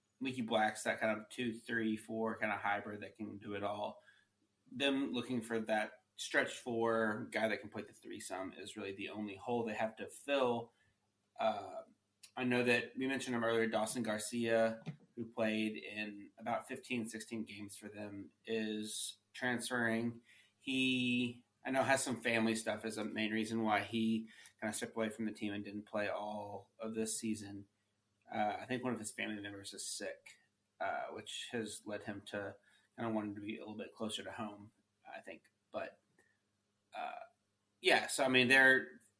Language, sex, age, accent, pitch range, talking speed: English, male, 30-49, American, 105-120 Hz, 185 wpm